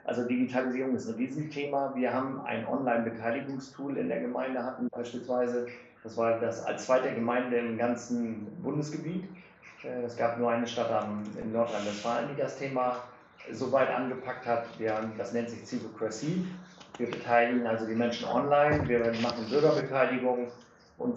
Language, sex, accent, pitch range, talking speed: German, male, German, 115-130 Hz, 145 wpm